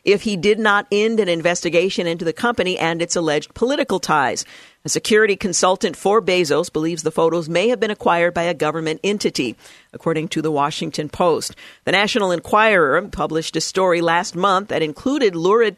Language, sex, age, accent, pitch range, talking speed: English, female, 50-69, American, 160-200 Hz, 180 wpm